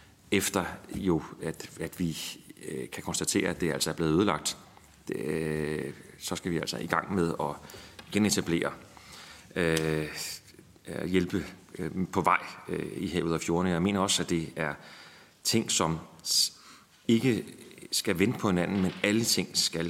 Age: 30-49